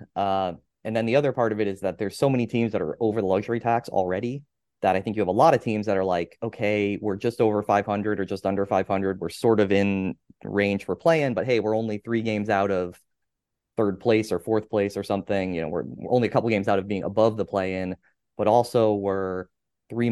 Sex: male